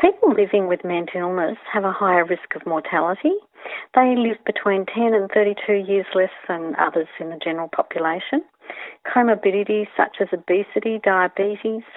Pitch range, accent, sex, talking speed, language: 175-210 Hz, Australian, female, 150 wpm, English